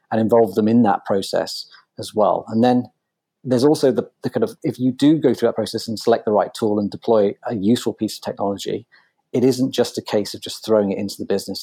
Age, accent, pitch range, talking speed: 40-59, British, 100-115 Hz, 245 wpm